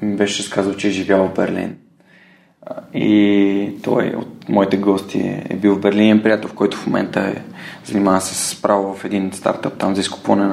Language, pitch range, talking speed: Bulgarian, 100-120 Hz, 190 wpm